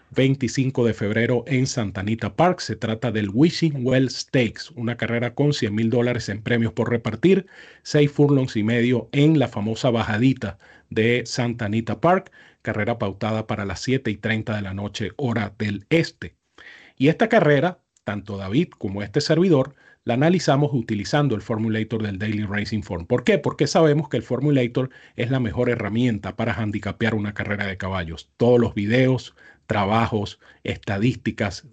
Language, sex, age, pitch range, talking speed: Spanish, male, 40-59, 110-140 Hz, 165 wpm